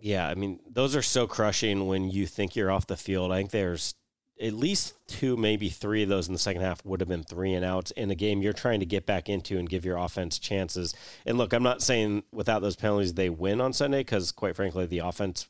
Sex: male